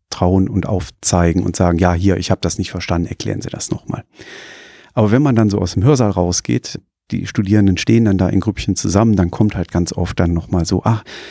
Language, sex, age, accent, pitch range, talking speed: German, male, 40-59, German, 90-115 Hz, 225 wpm